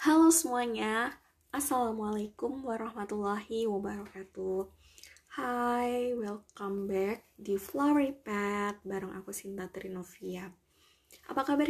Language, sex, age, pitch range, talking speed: Indonesian, female, 20-39, 190-210 Hz, 80 wpm